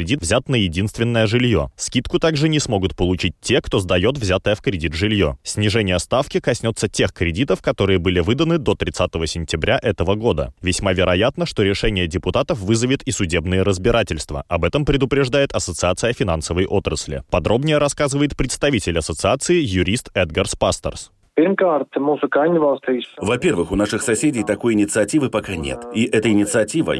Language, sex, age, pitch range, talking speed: Russian, male, 20-39, 95-135 Hz, 140 wpm